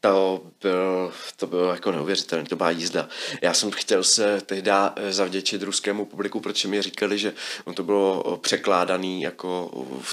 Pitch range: 100-135 Hz